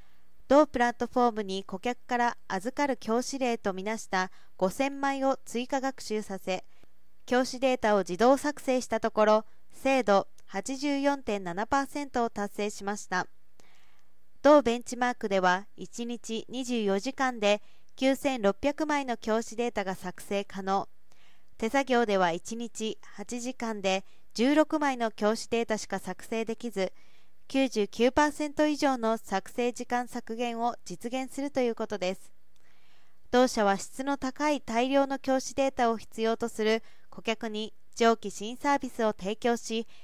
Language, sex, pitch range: Japanese, female, 205-265 Hz